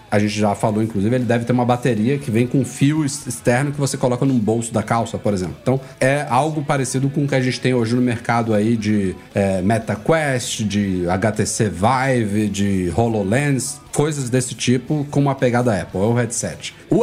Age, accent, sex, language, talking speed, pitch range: 40-59, Brazilian, male, Portuguese, 195 wpm, 115-145 Hz